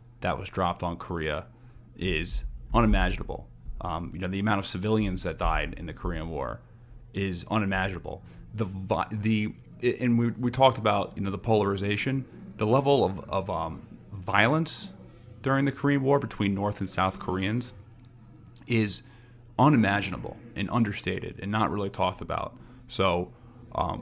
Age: 30-49